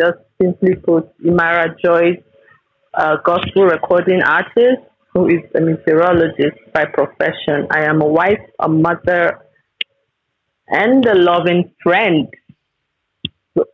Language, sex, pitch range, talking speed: English, female, 165-200 Hz, 115 wpm